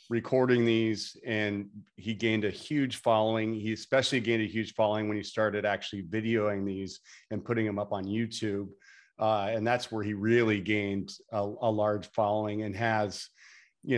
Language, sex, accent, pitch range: English, male, American, 100-115 Hz